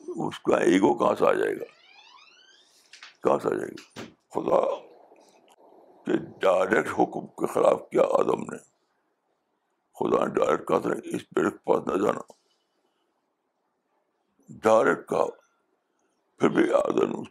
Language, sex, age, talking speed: Urdu, male, 60-79, 135 wpm